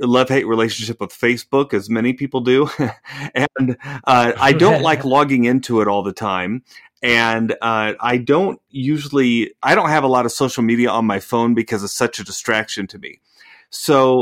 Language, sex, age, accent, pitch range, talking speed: English, male, 30-49, American, 115-145 Hz, 180 wpm